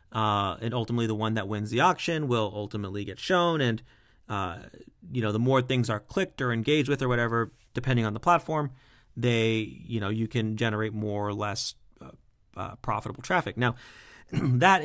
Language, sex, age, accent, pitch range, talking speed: English, male, 30-49, American, 110-145 Hz, 185 wpm